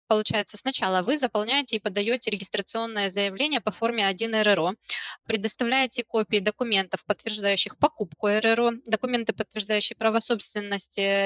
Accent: native